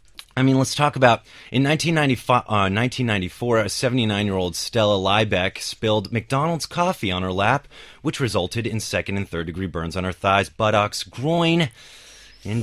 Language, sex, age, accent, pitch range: Chinese, male, 30-49, American, 95-135 Hz